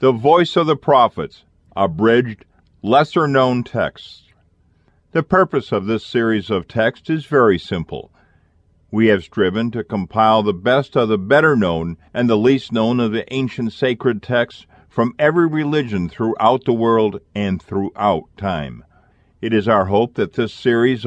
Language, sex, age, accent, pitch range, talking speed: English, male, 50-69, American, 105-135 Hz, 150 wpm